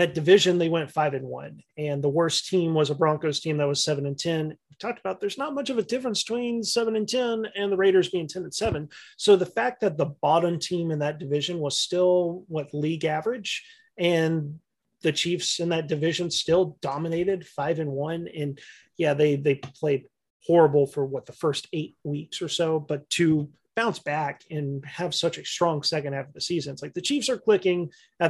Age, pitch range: 30-49, 145-180 Hz